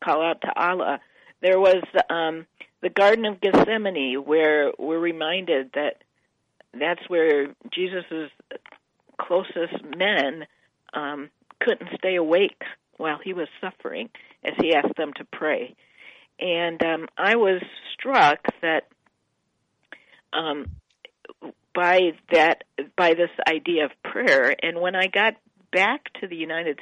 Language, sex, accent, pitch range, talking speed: English, female, American, 155-190 Hz, 125 wpm